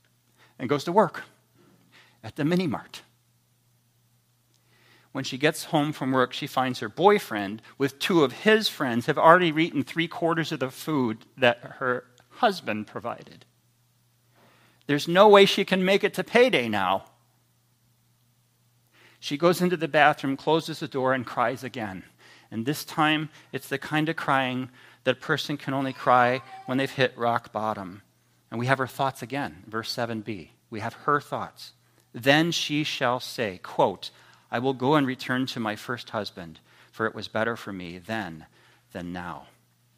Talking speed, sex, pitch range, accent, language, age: 165 wpm, male, 110-135 Hz, American, English, 40-59